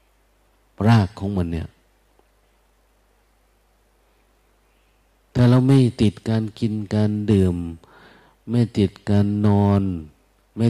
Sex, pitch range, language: male, 90-110 Hz, Thai